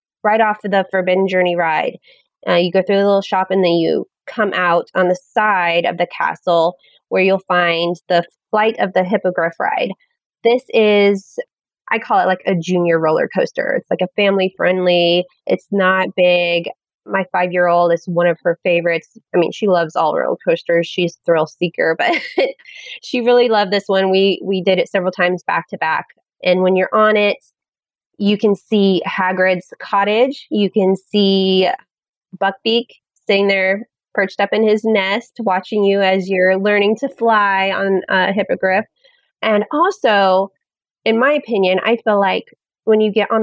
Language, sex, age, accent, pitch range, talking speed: English, female, 20-39, American, 180-215 Hz, 175 wpm